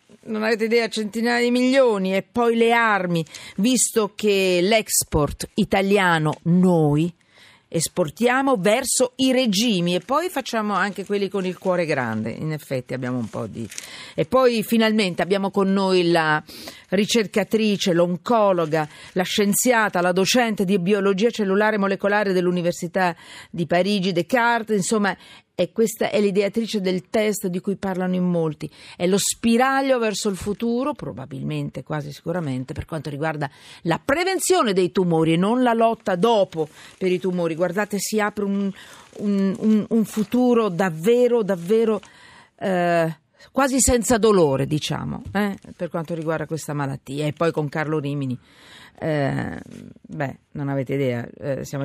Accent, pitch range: native, 160-220 Hz